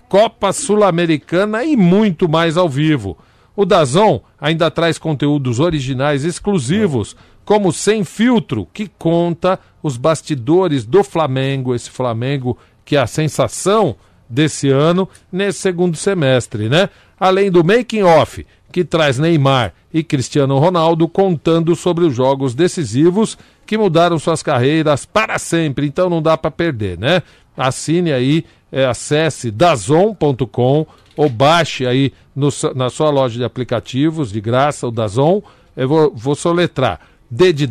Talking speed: 135 wpm